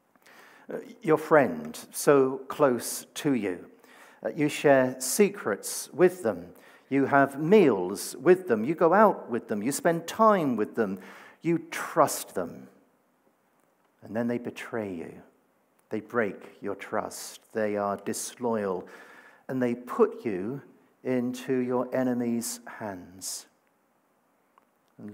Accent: British